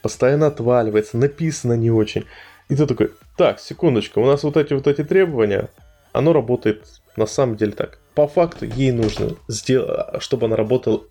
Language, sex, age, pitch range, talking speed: Russian, male, 20-39, 105-140 Hz, 170 wpm